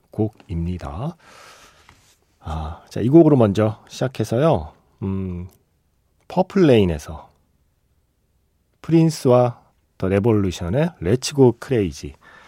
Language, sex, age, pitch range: Korean, male, 40-59, 95-140 Hz